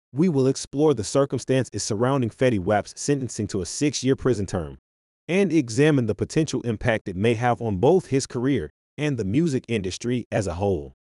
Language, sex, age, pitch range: English, male, 30-49, 100-140 Hz